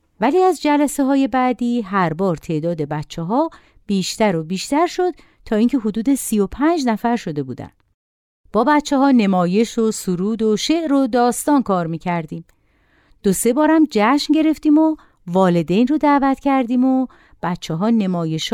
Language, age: Persian, 50-69